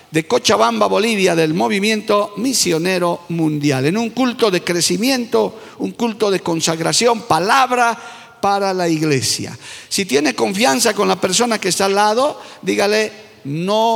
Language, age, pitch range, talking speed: Spanish, 50-69, 175-245 Hz, 140 wpm